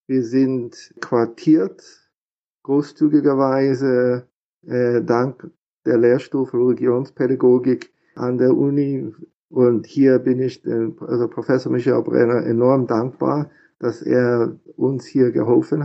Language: German